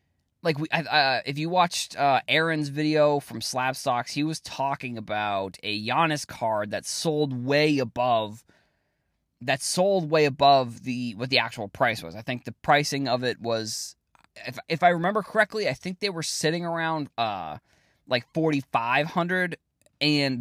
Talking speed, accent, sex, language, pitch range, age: 170 wpm, American, male, English, 120-160 Hz, 20-39